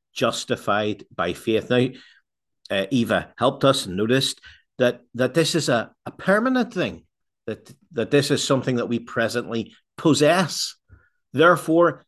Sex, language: male, English